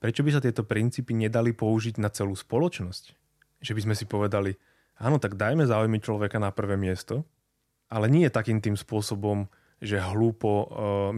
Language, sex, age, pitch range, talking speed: Slovak, male, 20-39, 105-125 Hz, 165 wpm